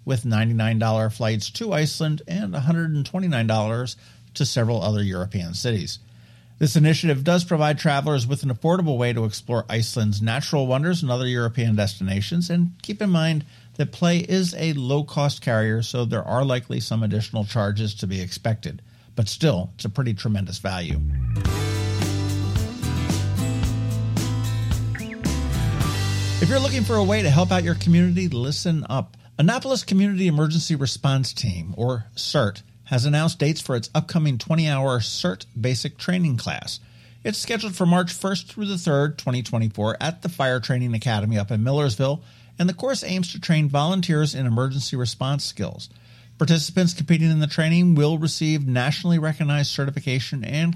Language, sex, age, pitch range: English, male, 50-69, 110-155 Hz